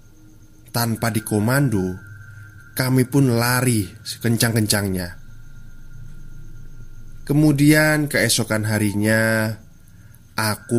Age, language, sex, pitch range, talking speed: 20-39, Indonesian, male, 105-120 Hz, 55 wpm